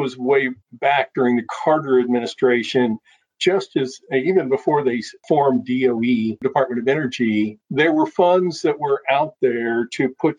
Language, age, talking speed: English, 50-69, 150 wpm